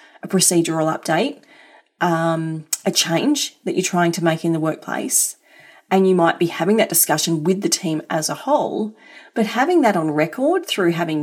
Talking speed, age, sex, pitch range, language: 180 wpm, 30-49, female, 160-245 Hz, English